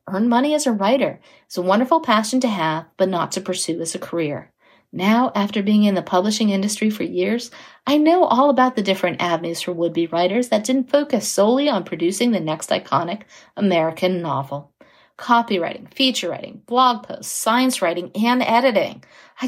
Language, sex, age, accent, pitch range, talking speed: English, female, 50-69, American, 185-265 Hz, 180 wpm